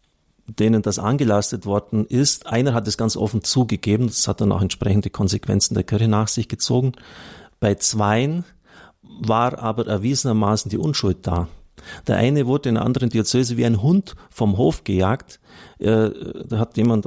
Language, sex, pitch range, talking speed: German, male, 100-120 Hz, 160 wpm